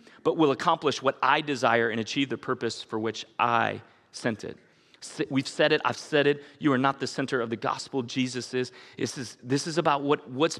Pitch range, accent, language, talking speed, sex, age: 125-160 Hz, American, English, 205 wpm, male, 30-49